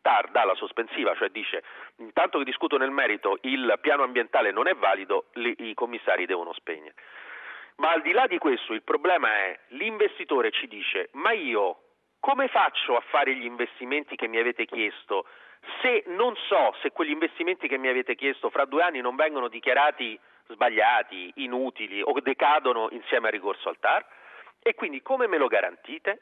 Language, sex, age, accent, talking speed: Italian, male, 40-59, native, 175 wpm